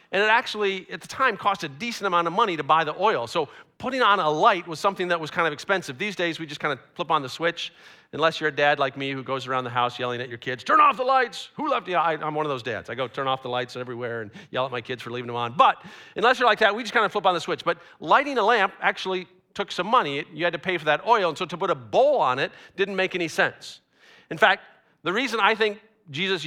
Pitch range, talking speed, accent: 160-230 Hz, 290 wpm, American